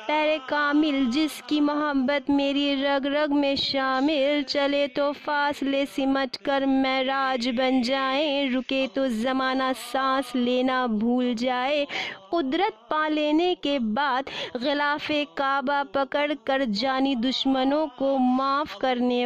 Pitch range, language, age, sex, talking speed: 235-285 Hz, Hindi, 30-49, female, 120 wpm